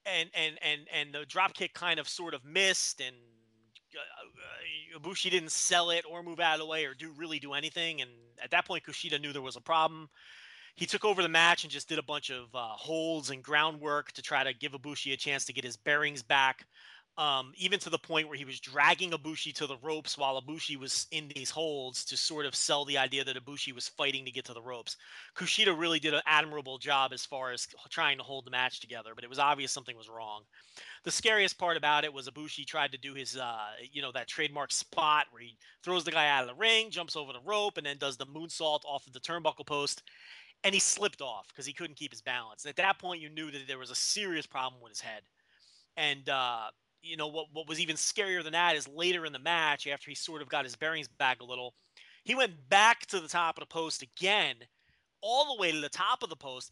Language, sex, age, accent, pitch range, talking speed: English, male, 30-49, American, 135-170 Hz, 245 wpm